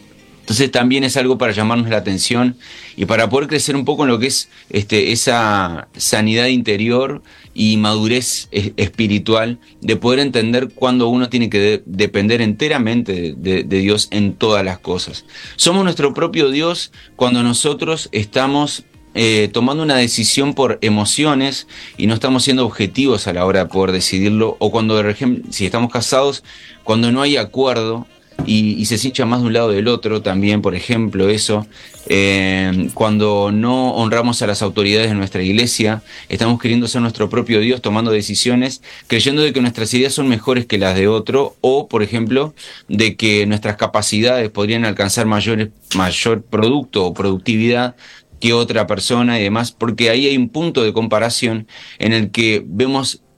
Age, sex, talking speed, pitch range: 30-49, male, 165 wpm, 105-125 Hz